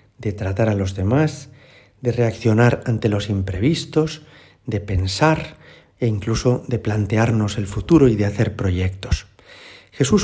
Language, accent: Spanish, Spanish